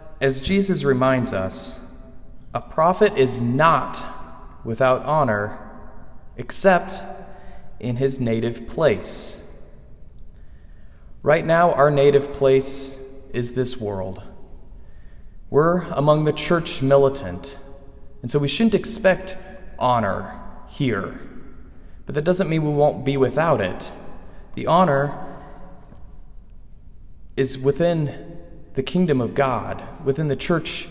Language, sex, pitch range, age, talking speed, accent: English, male, 110-170 Hz, 20-39, 105 wpm, American